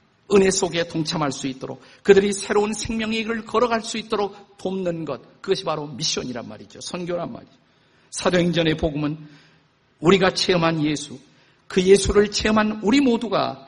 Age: 50-69